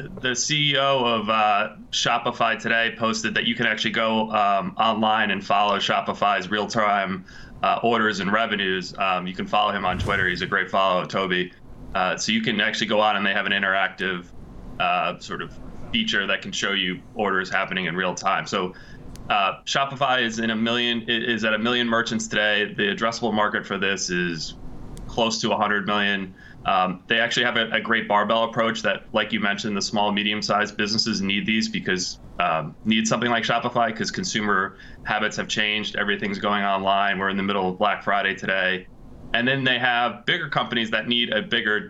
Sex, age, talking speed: male, 20-39, 190 wpm